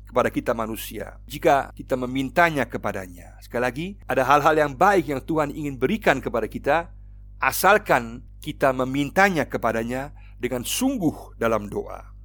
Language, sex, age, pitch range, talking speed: Indonesian, male, 50-69, 105-140 Hz, 130 wpm